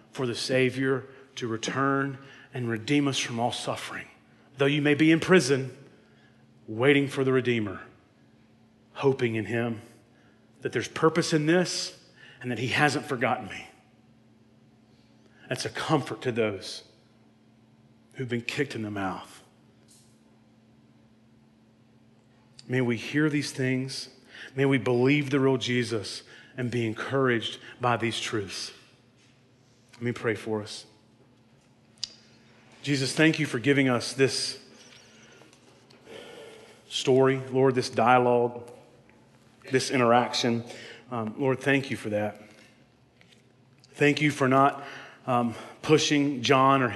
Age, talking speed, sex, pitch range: 40-59, 120 wpm, male, 120-140 Hz